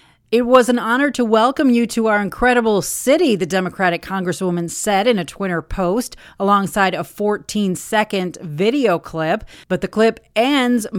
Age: 40-59